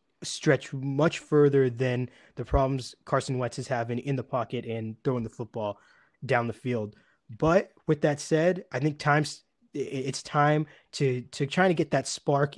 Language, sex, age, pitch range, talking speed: English, male, 20-39, 125-155 Hz, 170 wpm